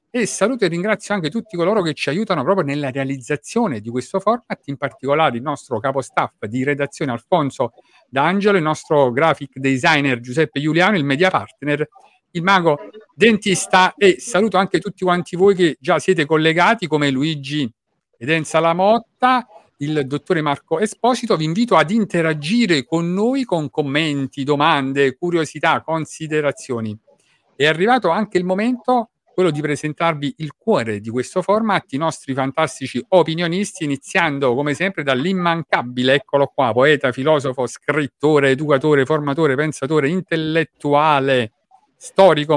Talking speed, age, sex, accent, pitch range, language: 140 wpm, 50-69, male, native, 140-185 Hz, Italian